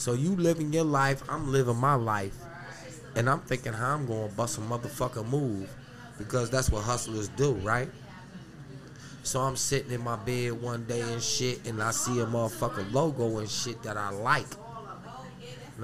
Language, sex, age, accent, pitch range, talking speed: English, male, 30-49, American, 110-130 Hz, 180 wpm